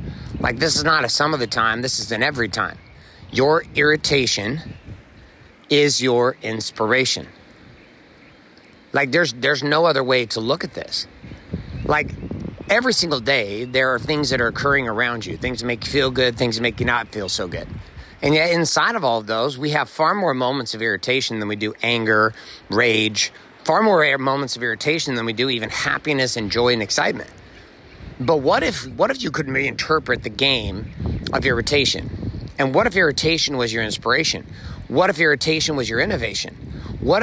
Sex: male